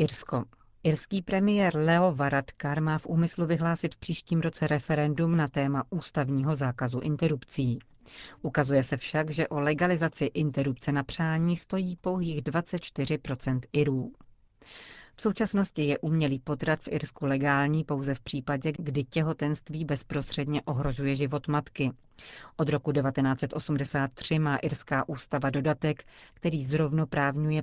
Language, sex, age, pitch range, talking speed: Czech, female, 40-59, 135-155 Hz, 125 wpm